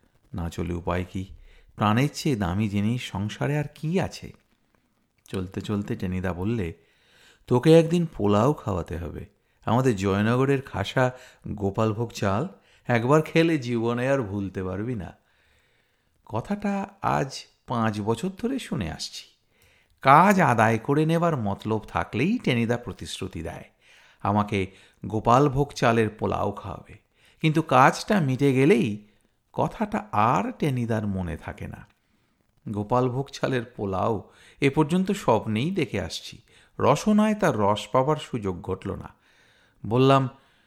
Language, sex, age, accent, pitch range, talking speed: Bengali, male, 50-69, native, 100-155 Hz, 115 wpm